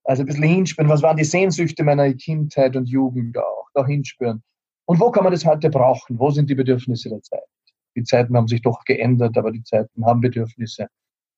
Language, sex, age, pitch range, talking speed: German, male, 40-59, 125-155 Hz, 205 wpm